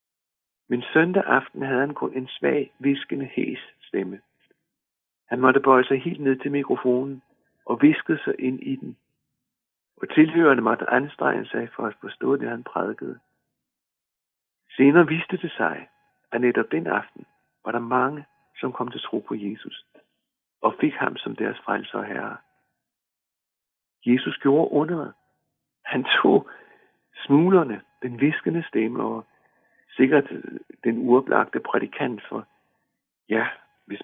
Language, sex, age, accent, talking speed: Danish, male, 60-79, native, 140 wpm